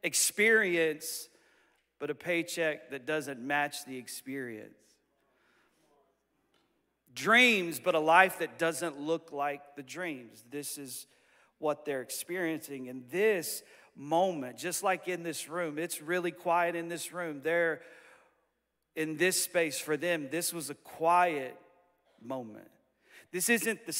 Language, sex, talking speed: English, male, 130 wpm